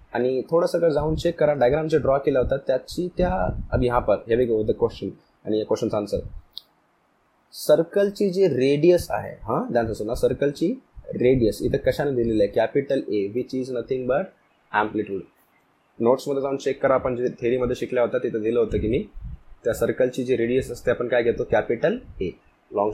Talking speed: 100 wpm